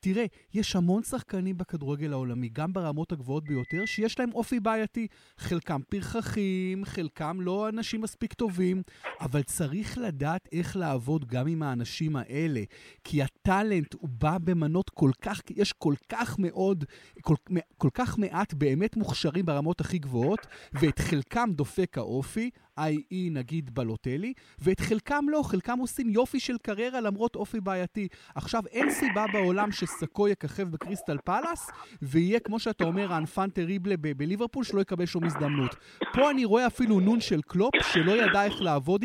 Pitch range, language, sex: 145-210 Hz, Hebrew, male